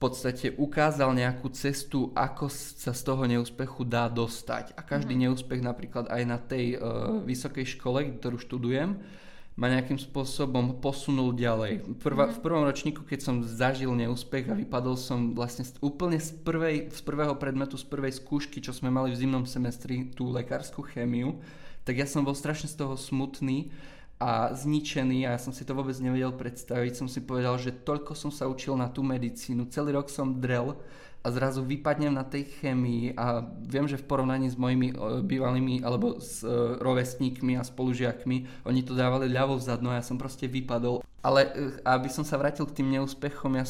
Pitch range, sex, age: 125-140 Hz, male, 20-39